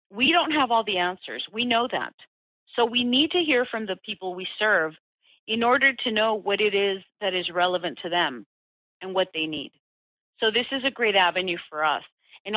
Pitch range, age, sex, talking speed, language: 180-220 Hz, 40-59, female, 210 wpm, English